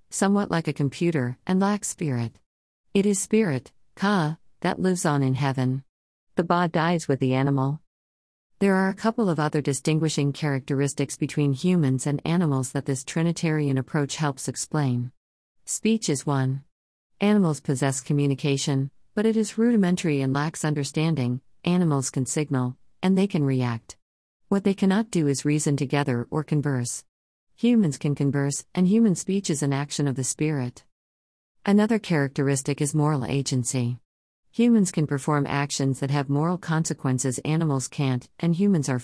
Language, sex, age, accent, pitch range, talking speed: English, female, 50-69, American, 130-170 Hz, 150 wpm